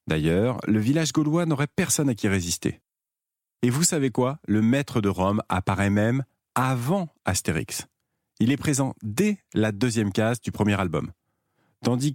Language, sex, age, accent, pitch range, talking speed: French, male, 40-59, French, 100-140 Hz, 160 wpm